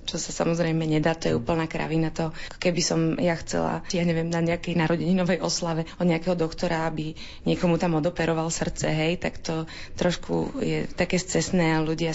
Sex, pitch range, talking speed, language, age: female, 160-175 Hz, 175 wpm, Slovak, 20-39